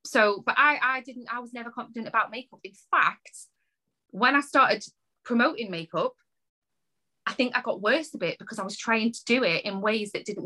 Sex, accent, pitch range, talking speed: female, British, 190-245 Hz, 205 wpm